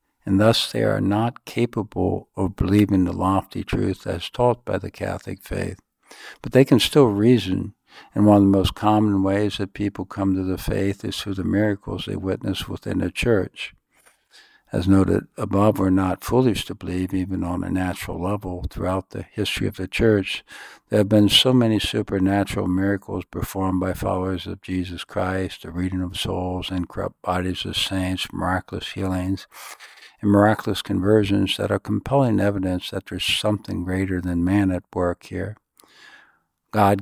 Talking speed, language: 170 wpm, English